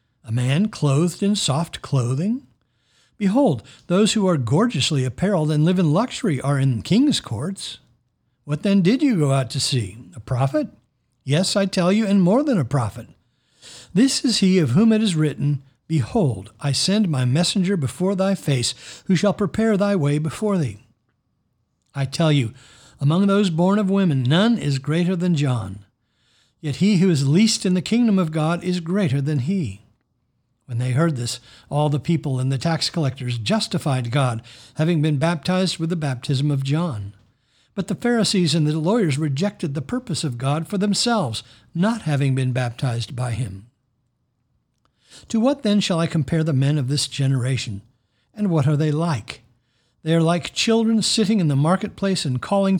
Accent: American